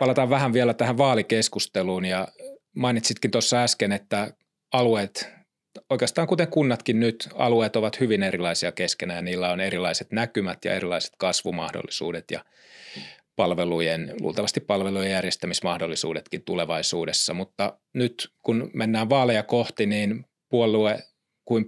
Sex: male